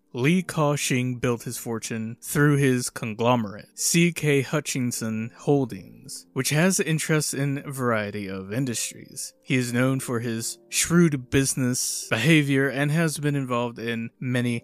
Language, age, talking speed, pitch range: English, 20-39, 135 wpm, 110-140 Hz